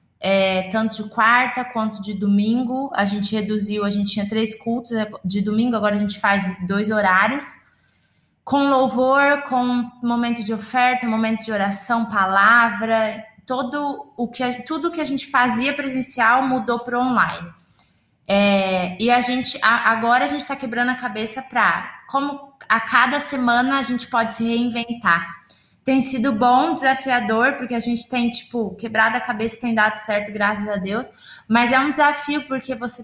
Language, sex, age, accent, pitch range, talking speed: Portuguese, female, 20-39, Brazilian, 215-255 Hz, 150 wpm